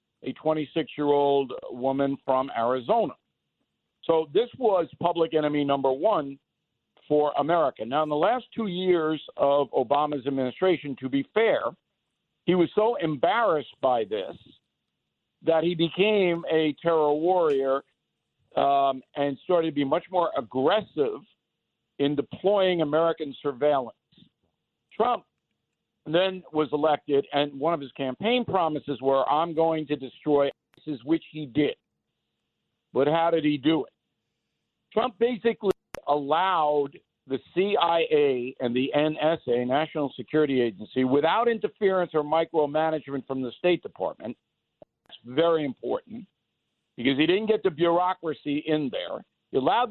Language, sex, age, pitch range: English, male, 60-79, 140-175 Hz